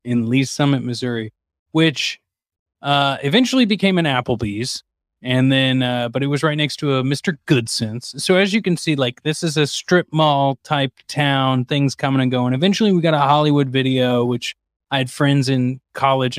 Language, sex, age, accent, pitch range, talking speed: English, male, 20-39, American, 120-155 Hz, 185 wpm